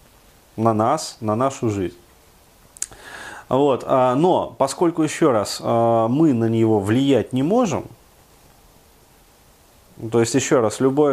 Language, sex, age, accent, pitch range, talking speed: Russian, male, 30-49, native, 110-135 Hz, 115 wpm